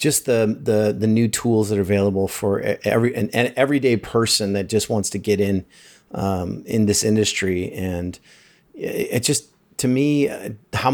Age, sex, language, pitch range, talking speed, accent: 30-49, male, English, 105-115 Hz, 175 wpm, American